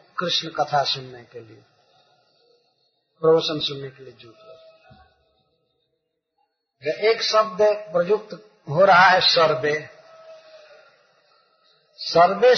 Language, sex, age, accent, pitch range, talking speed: Hindi, male, 50-69, native, 155-215 Hz, 95 wpm